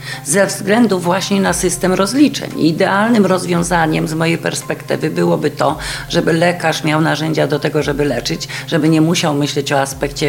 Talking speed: 155 wpm